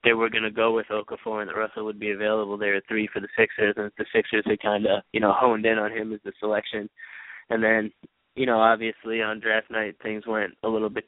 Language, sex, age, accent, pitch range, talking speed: English, male, 20-39, American, 105-115 Hz, 255 wpm